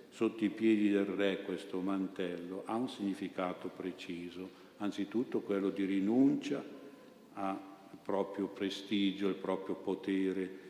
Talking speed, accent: 120 wpm, native